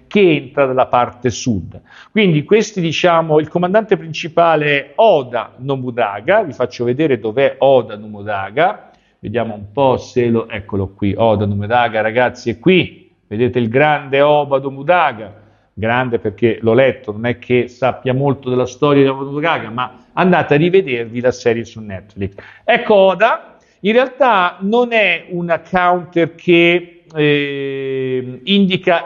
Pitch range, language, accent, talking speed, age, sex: 130-185 Hz, Italian, native, 145 wpm, 50-69, male